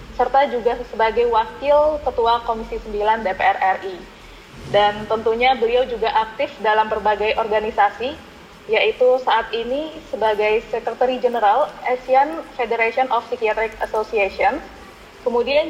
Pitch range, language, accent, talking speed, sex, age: 215-260 Hz, English, Indonesian, 110 wpm, female, 20-39